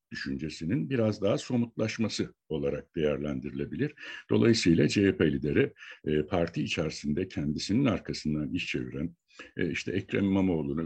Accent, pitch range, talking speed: native, 75-105 Hz, 110 wpm